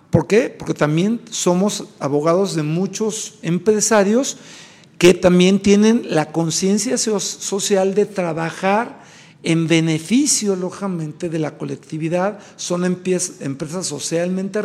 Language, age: Spanish, 50-69